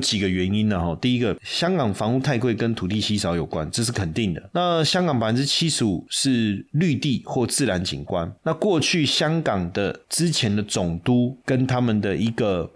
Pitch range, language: 100-130 Hz, Chinese